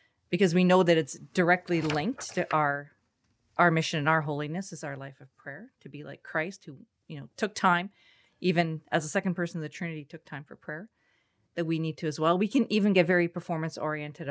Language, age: English, 40-59